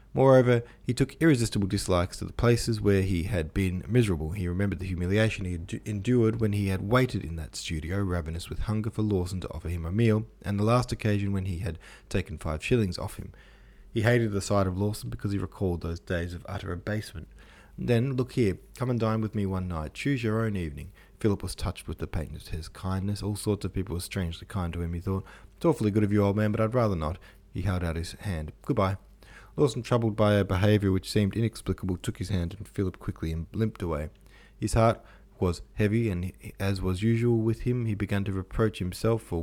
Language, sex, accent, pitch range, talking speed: English, male, Australian, 90-110 Hz, 225 wpm